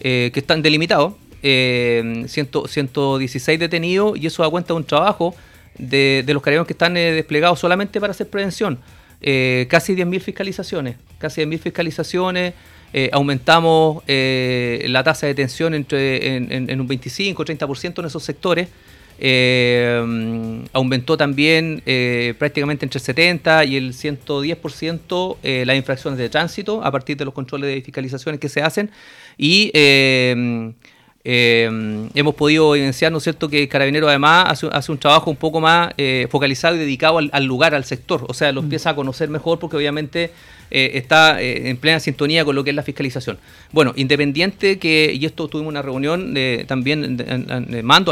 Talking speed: 170 wpm